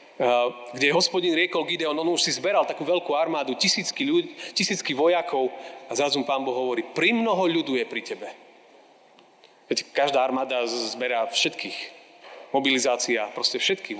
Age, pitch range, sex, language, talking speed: 40-59, 125-170 Hz, male, Slovak, 140 wpm